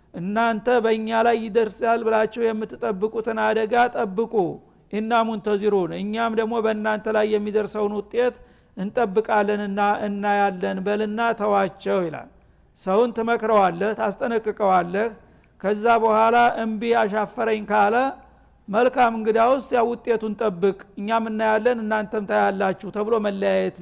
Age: 50-69